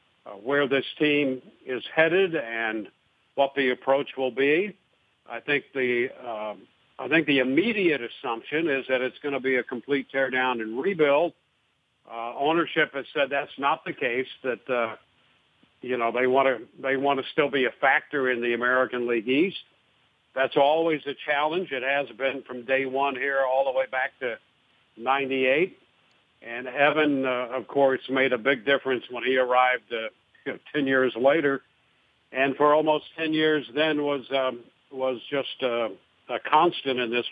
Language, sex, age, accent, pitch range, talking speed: English, male, 60-79, American, 125-145 Hz, 175 wpm